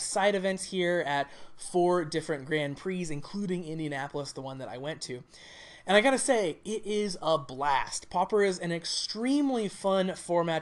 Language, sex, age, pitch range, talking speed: English, male, 20-39, 150-200 Hz, 170 wpm